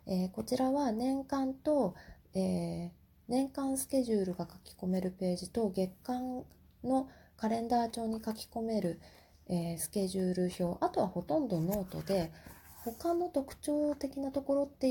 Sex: female